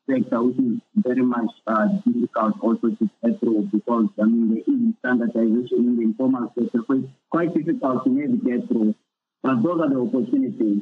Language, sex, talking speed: English, male, 175 wpm